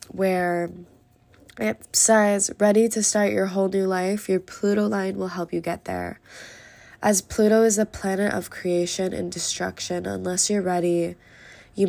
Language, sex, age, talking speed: English, female, 20-39, 155 wpm